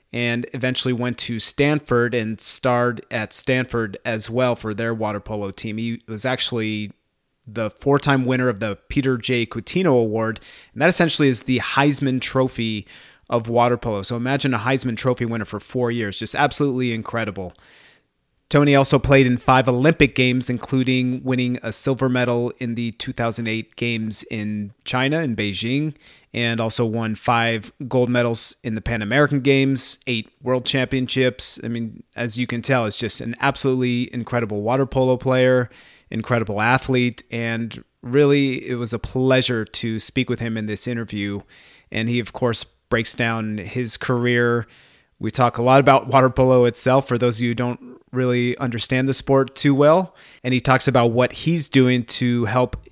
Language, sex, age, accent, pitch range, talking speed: English, male, 30-49, American, 115-130 Hz, 170 wpm